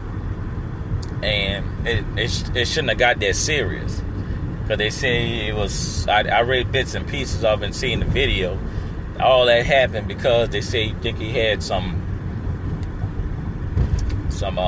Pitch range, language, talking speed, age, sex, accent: 95-115 Hz, English, 145 wpm, 30-49, male, American